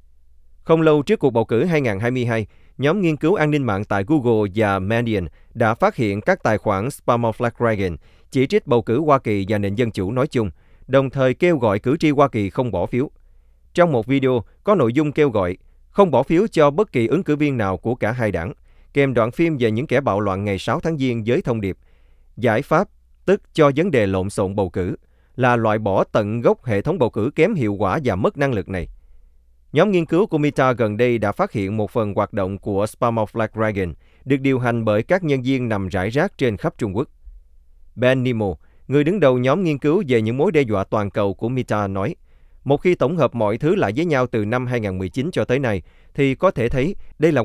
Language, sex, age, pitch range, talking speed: Vietnamese, male, 20-39, 100-135 Hz, 230 wpm